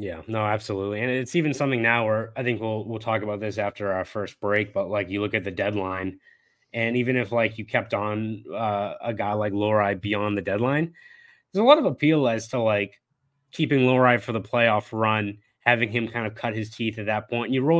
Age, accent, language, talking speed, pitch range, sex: 20-39, American, English, 235 wpm, 105-130 Hz, male